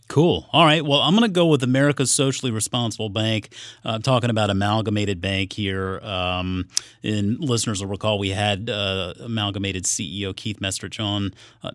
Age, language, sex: 30-49, English, male